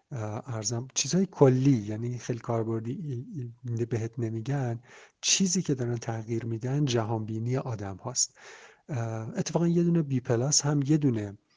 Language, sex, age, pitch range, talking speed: Arabic, male, 50-69, 115-145 Hz, 130 wpm